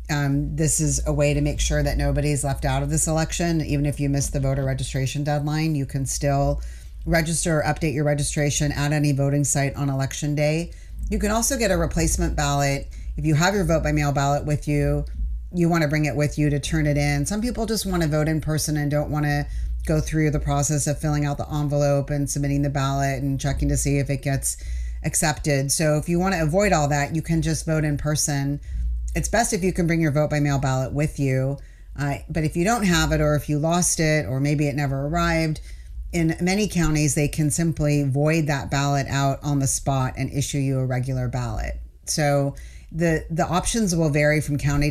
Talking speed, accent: 225 wpm, American